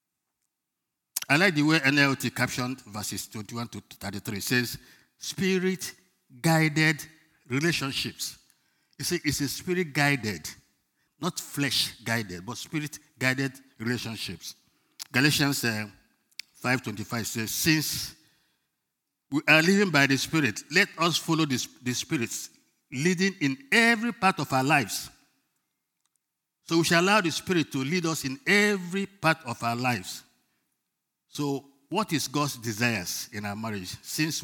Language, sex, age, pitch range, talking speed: English, male, 50-69, 115-155 Hz, 120 wpm